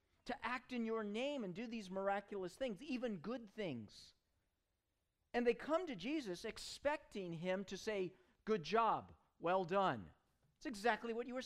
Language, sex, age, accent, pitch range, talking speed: English, male, 50-69, American, 165-240 Hz, 160 wpm